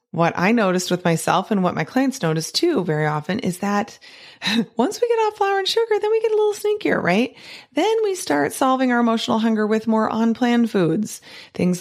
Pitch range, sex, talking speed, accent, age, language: 185-240 Hz, female, 210 wpm, American, 30-49, English